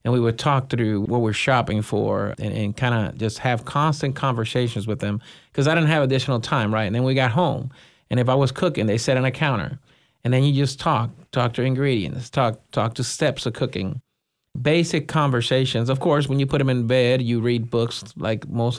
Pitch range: 115-135 Hz